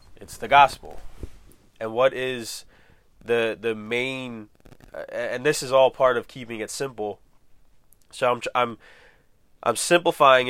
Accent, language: American, English